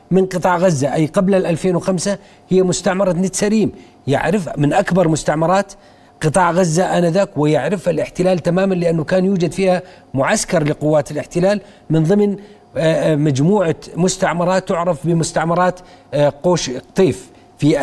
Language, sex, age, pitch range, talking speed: Arabic, male, 40-59, 160-205 Hz, 120 wpm